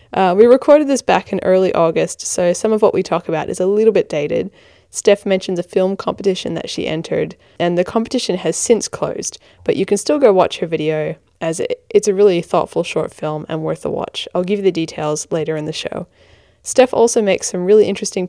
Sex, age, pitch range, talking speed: female, 10-29, 165-215 Hz, 225 wpm